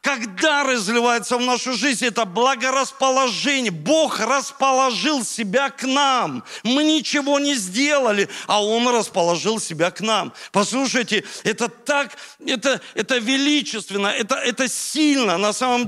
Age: 40-59